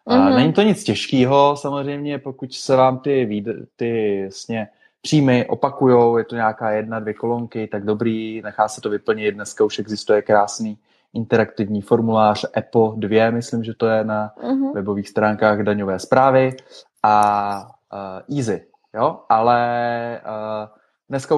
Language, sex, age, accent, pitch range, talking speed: Czech, male, 20-39, native, 105-120 Hz, 125 wpm